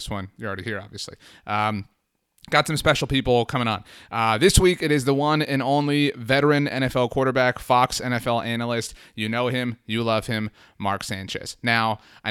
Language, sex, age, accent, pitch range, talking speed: English, male, 30-49, American, 110-145 Hz, 180 wpm